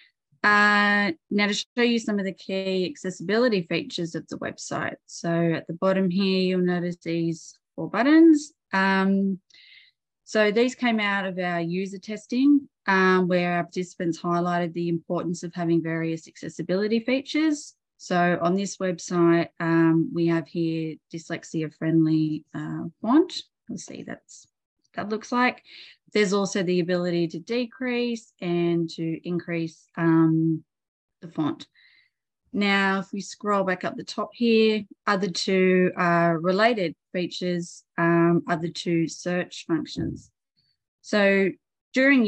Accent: Australian